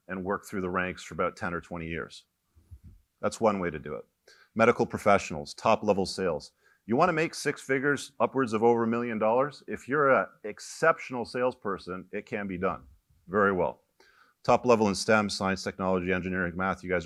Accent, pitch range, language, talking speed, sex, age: American, 90-125 Hz, English, 190 wpm, male, 40-59